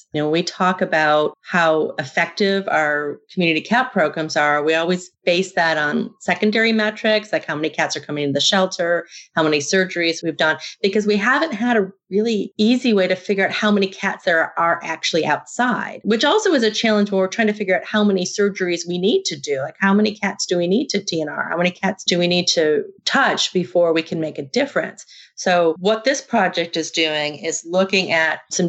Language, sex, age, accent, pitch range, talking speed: English, female, 30-49, American, 160-210 Hz, 215 wpm